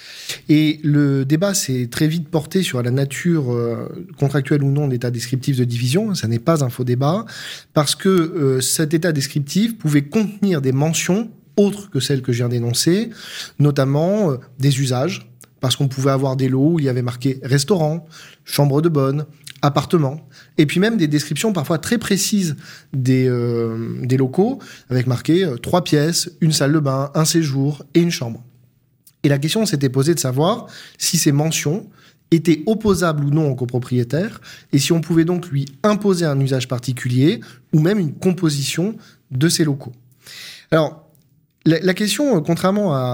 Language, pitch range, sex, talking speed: French, 130-170 Hz, male, 175 wpm